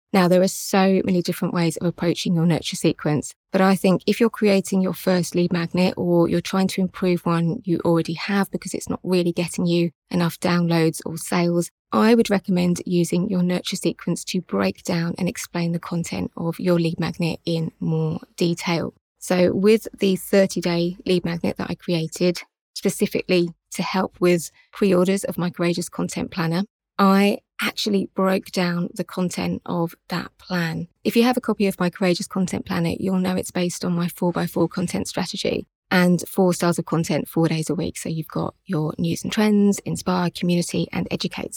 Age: 20-39